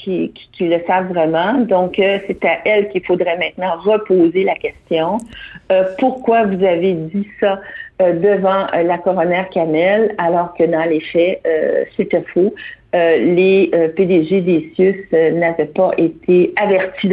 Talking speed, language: 165 wpm, French